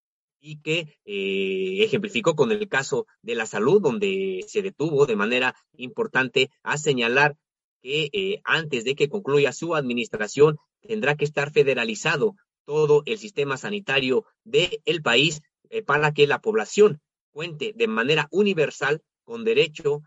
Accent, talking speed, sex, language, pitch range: Mexican, 145 wpm, male, Spanish, 145-210 Hz